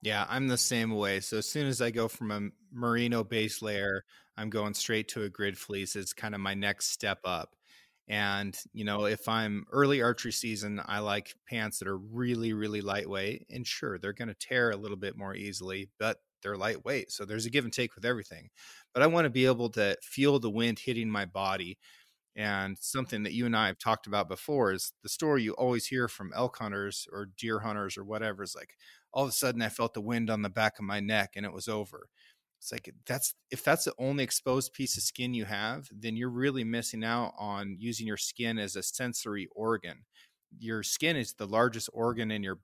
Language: English